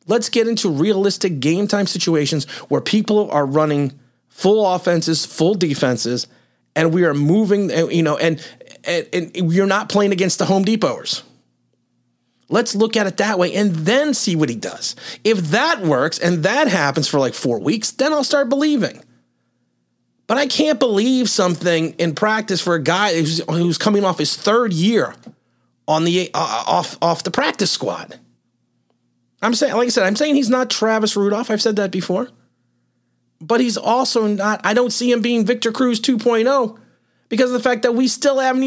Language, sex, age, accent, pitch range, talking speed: English, male, 30-49, American, 165-235 Hz, 180 wpm